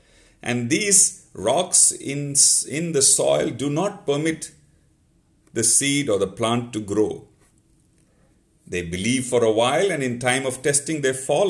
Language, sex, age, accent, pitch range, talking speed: English, male, 50-69, Indian, 120-165 Hz, 150 wpm